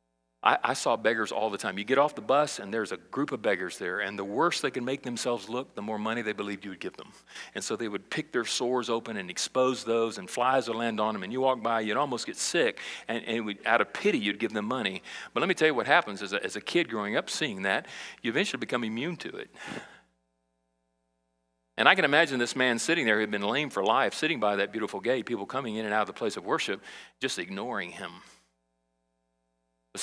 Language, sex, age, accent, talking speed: English, male, 40-59, American, 245 wpm